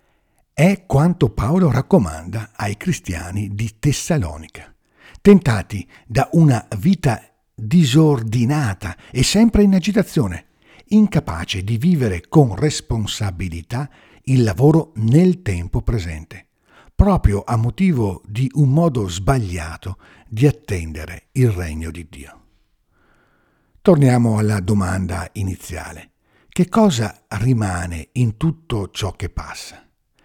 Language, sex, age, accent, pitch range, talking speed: Italian, male, 60-79, native, 95-135 Hz, 105 wpm